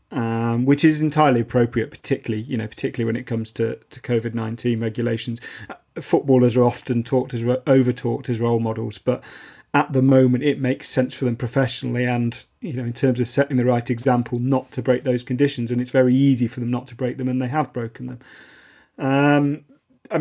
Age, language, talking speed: 40-59, English, 200 wpm